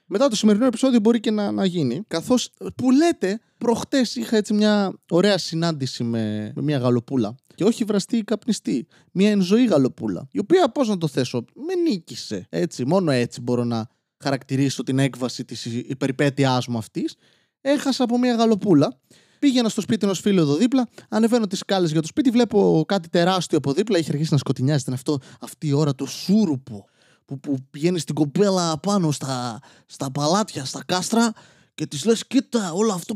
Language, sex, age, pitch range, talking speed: Greek, male, 20-39, 140-230 Hz, 175 wpm